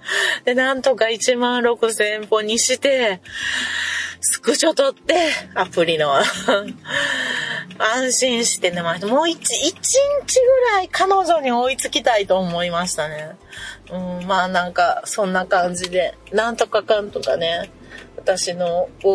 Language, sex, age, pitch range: Japanese, female, 30-49, 195-330 Hz